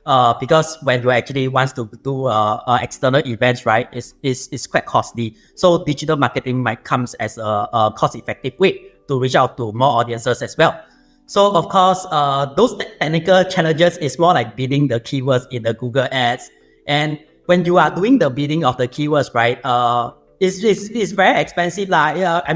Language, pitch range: English, 120-165 Hz